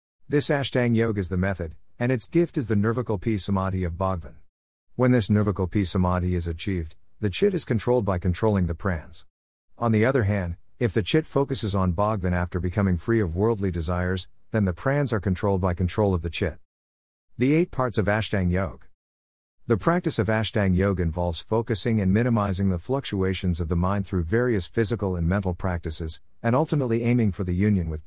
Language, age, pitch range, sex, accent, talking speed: English, 50-69, 85-115 Hz, male, American, 190 wpm